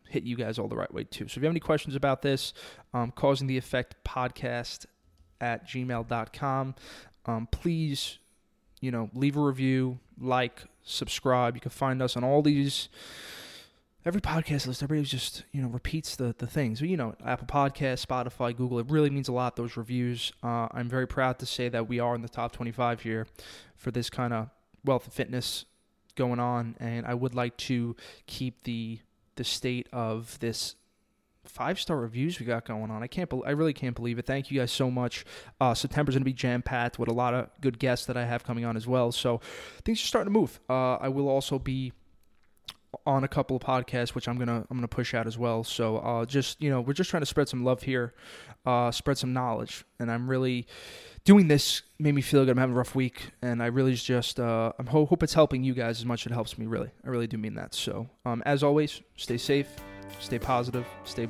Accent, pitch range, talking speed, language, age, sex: American, 120-135 Hz, 220 wpm, English, 20-39, male